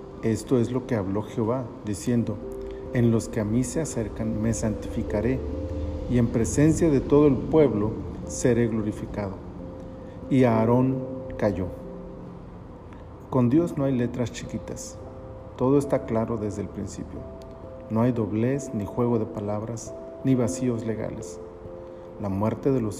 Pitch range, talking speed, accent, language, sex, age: 105-130 Hz, 145 wpm, Mexican, Spanish, male, 40-59